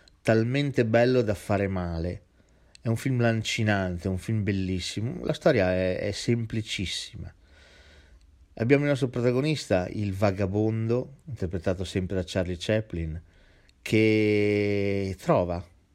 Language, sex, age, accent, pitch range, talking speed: Italian, male, 40-59, native, 95-120 Hz, 115 wpm